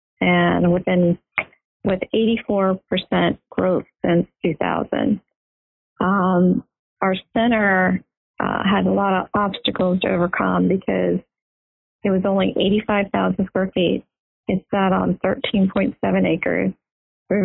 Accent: American